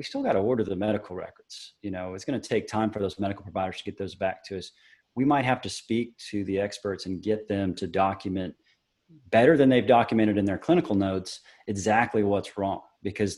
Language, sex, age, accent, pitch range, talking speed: English, male, 30-49, American, 95-110 Hz, 225 wpm